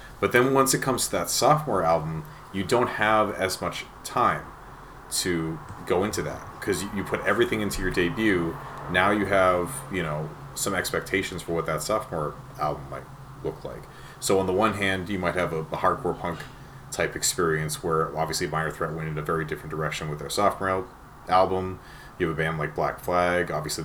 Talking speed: 195 wpm